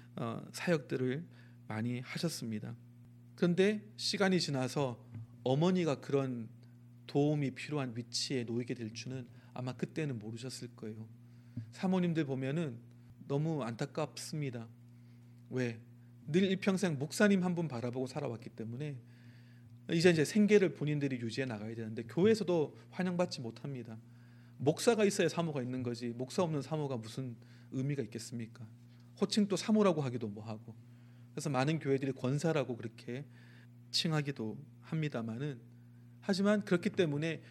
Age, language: 40-59, Korean